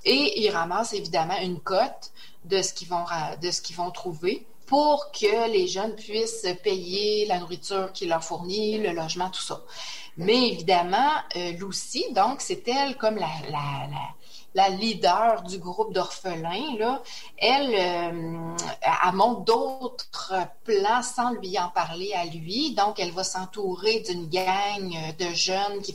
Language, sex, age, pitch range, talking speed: French, female, 30-49, 180-225 Hz, 155 wpm